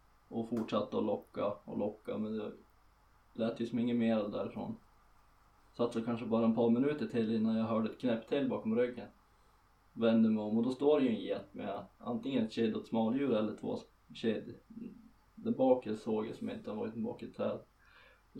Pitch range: 110-155 Hz